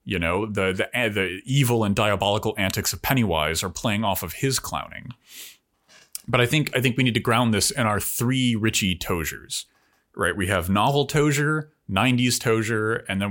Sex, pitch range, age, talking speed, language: male, 100-135 Hz, 30-49, 185 wpm, English